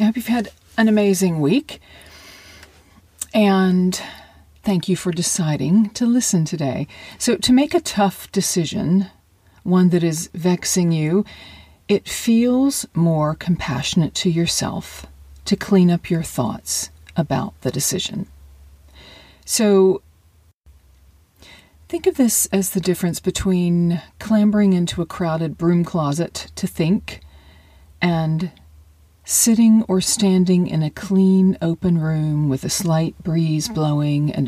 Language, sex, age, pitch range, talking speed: English, female, 40-59, 145-190 Hz, 125 wpm